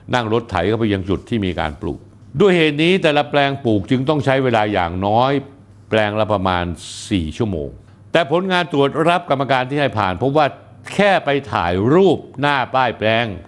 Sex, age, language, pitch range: male, 60-79, Thai, 105-150 Hz